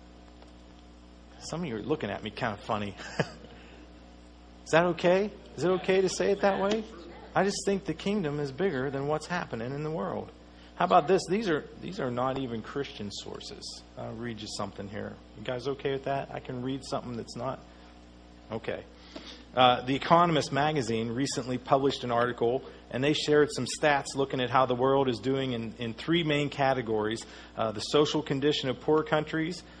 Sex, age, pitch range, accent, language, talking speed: male, 40-59, 110-150 Hz, American, English, 190 wpm